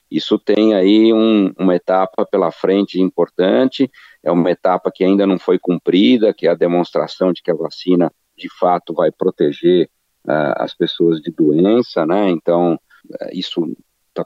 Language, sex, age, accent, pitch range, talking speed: Portuguese, male, 50-69, Brazilian, 90-110 Hz, 150 wpm